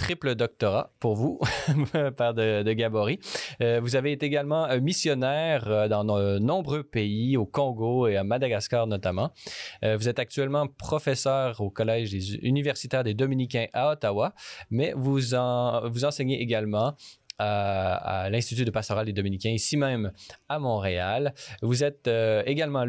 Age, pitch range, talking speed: 20-39, 110-140 Hz, 150 wpm